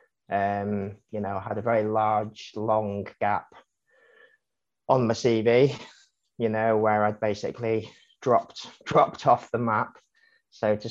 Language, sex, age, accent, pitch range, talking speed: English, male, 20-39, British, 105-115 Hz, 140 wpm